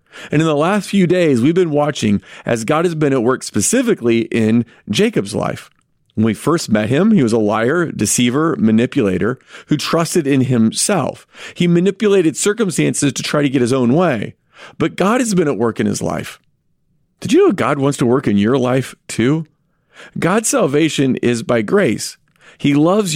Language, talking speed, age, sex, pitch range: English, 185 wpm, 40-59, male, 125-175 Hz